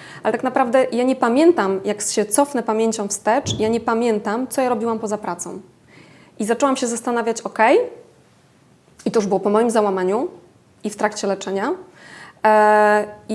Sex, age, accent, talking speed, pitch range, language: female, 20-39, native, 160 wpm, 205-245 Hz, Polish